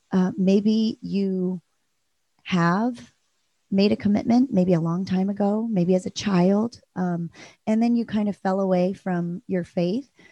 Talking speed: 155 wpm